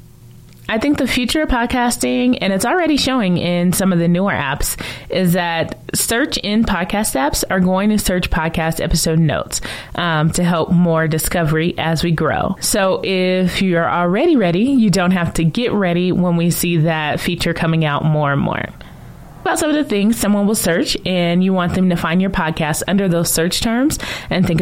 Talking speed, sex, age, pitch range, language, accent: 195 wpm, female, 20-39, 165-205 Hz, English, American